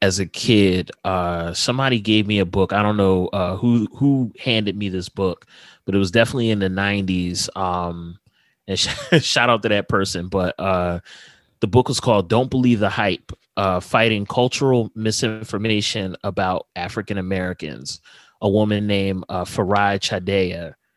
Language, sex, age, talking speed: English, male, 30-49, 160 wpm